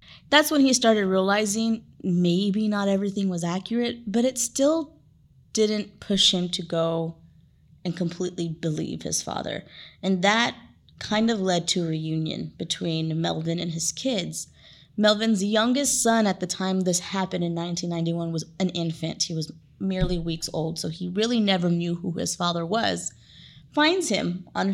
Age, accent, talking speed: 20-39, American, 160 wpm